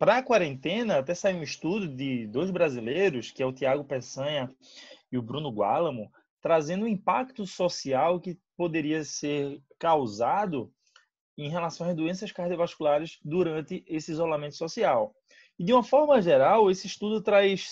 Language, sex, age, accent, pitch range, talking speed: Portuguese, male, 20-39, Brazilian, 150-220 Hz, 150 wpm